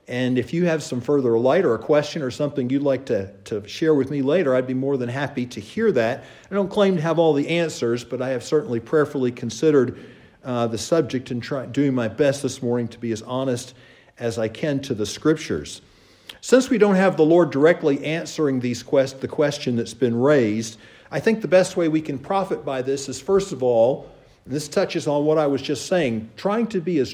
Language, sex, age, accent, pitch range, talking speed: English, male, 50-69, American, 130-170 Hz, 225 wpm